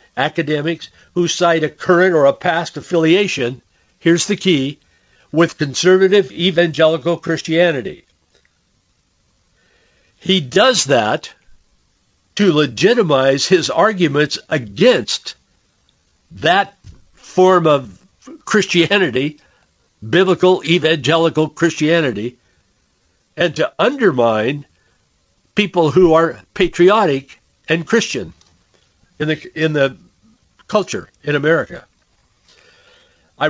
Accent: American